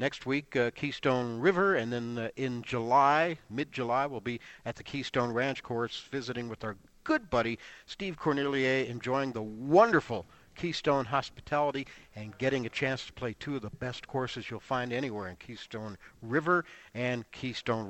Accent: American